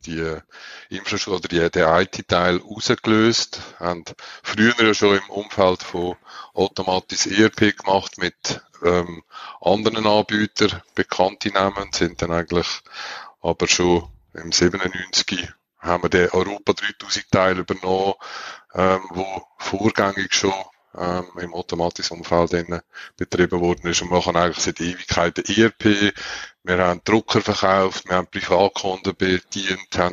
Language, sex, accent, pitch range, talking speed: German, male, Austrian, 90-105 Hz, 125 wpm